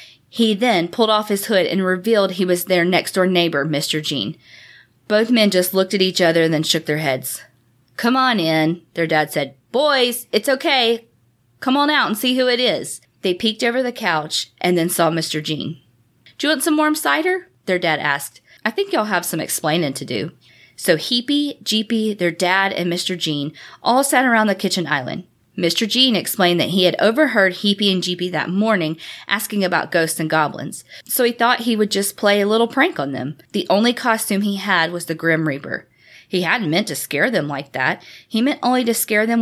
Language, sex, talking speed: English, female, 205 wpm